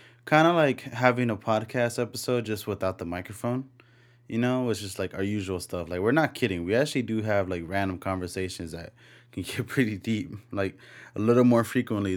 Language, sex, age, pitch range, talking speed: English, male, 20-39, 95-120 Hz, 195 wpm